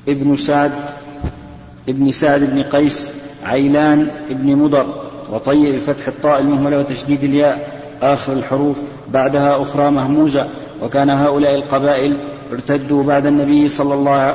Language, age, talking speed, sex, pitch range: Arabic, 40-59, 115 wpm, male, 140-145 Hz